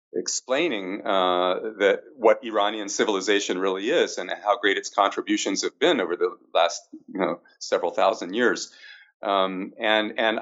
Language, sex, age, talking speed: English, male, 40-59, 140 wpm